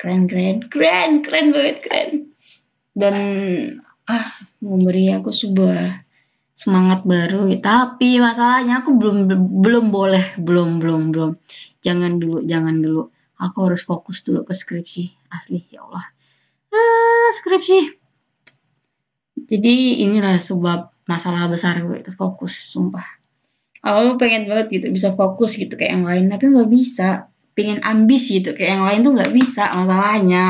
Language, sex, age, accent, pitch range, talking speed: Indonesian, female, 20-39, native, 180-240 Hz, 135 wpm